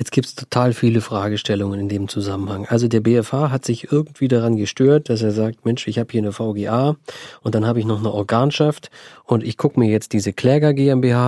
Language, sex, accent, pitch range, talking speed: German, male, German, 110-135 Hz, 220 wpm